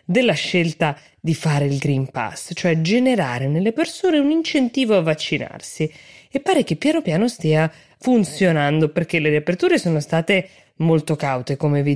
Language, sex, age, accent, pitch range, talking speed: Italian, female, 20-39, native, 140-180 Hz, 155 wpm